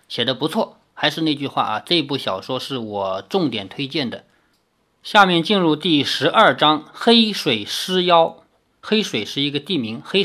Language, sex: Chinese, male